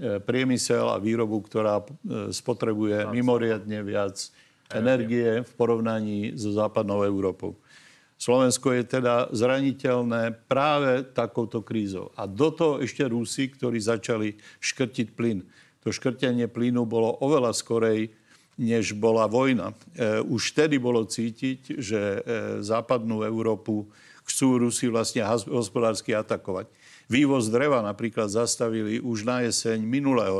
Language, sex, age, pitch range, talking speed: Slovak, male, 50-69, 110-125 Hz, 115 wpm